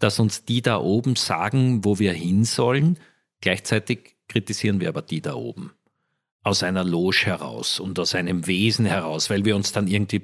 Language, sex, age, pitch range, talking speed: German, male, 50-69, 105-140 Hz, 180 wpm